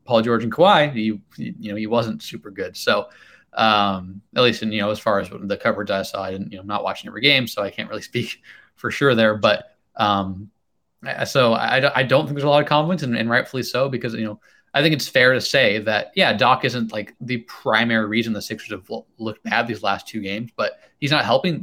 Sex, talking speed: male, 245 wpm